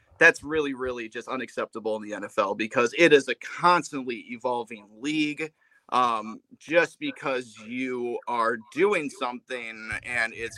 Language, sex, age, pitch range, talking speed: English, male, 30-49, 125-175 Hz, 135 wpm